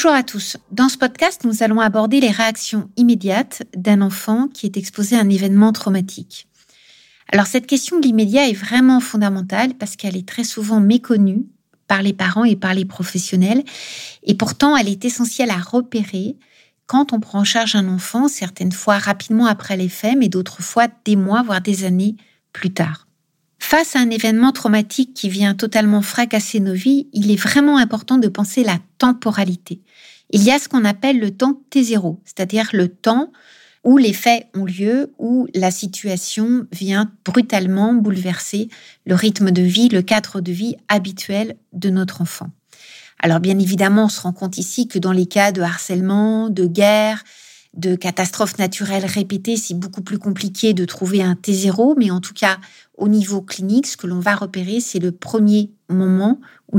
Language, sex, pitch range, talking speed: French, female, 190-235 Hz, 180 wpm